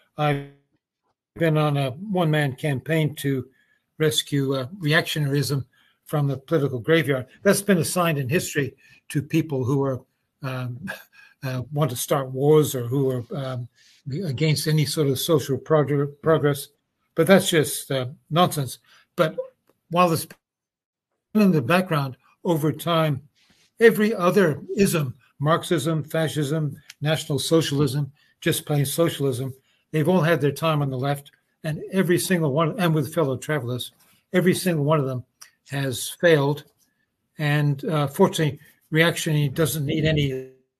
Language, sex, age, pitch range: English, male, 60-79, 140-165 Hz